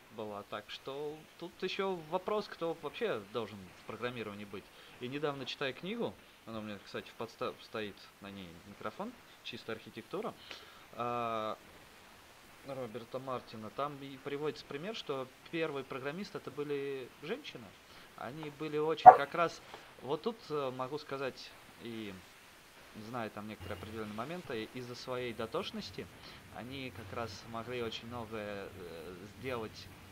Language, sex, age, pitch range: Russian, male, 20-39, 105-135 Hz